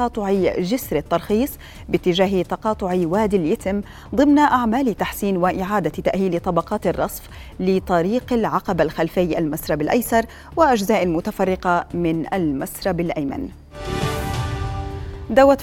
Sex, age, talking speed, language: female, 30-49, 95 wpm, Arabic